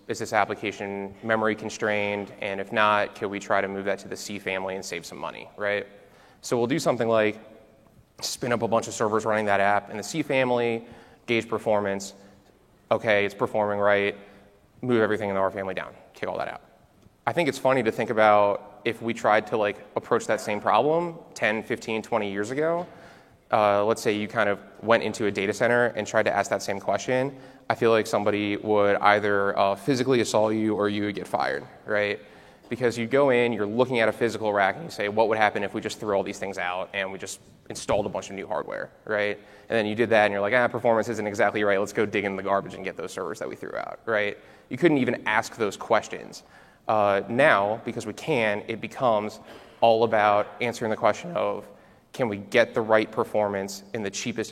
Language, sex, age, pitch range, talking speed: English, male, 20-39, 100-115 Hz, 225 wpm